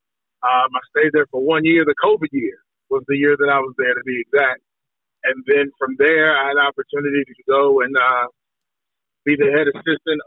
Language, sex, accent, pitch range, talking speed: English, male, American, 135-155 Hz, 210 wpm